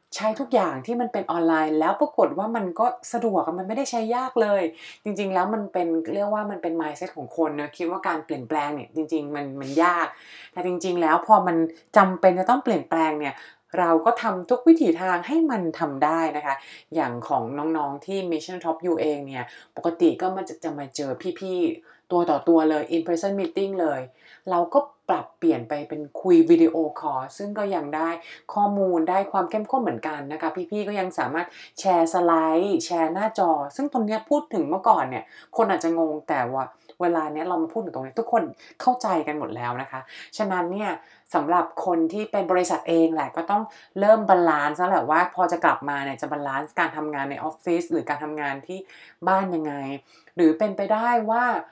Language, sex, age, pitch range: English, female, 20-39, 155-205 Hz